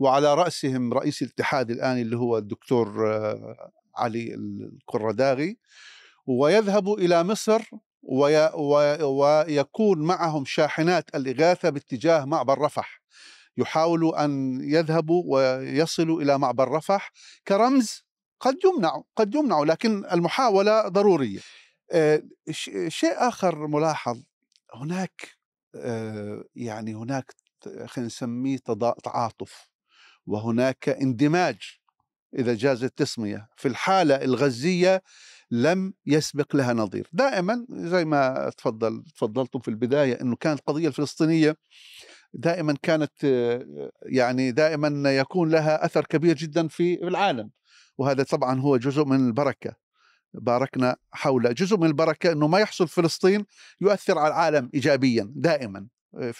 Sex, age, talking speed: male, 50-69, 105 wpm